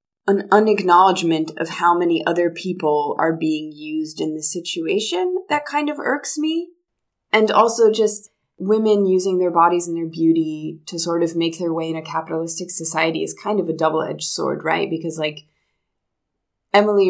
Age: 20-39